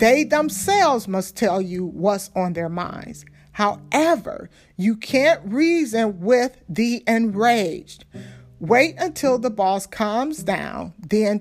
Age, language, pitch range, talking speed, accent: 50-69, English, 195-280 Hz, 120 wpm, American